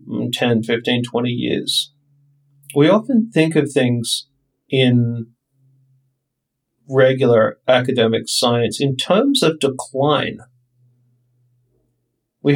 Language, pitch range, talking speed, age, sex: English, 125-145 Hz, 85 wpm, 40-59, male